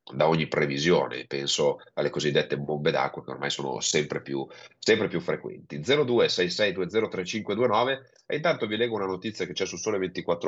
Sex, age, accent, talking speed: male, 30-49, native, 160 wpm